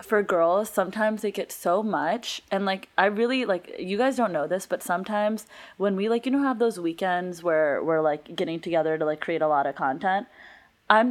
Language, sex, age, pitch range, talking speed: English, female, 20-39, 165-215 Hz, 215 wpm